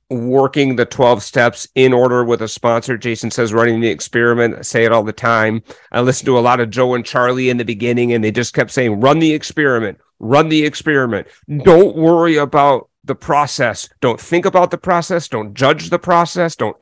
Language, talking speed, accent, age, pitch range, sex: English, 205 wpm, American, 40-59, 120-150 Hz, male